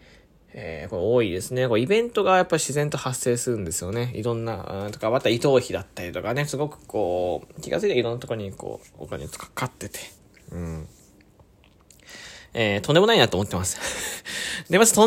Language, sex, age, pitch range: Japanese, male, 20-39, 110-155 Hz